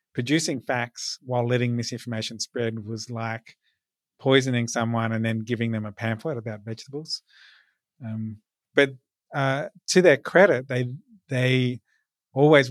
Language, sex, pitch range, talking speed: English, male, 115-135 Hz, 125 wpm